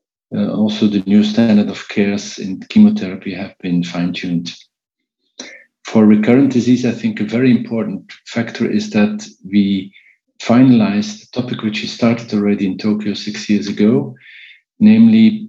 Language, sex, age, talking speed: English, male, 50-69, 145 wpm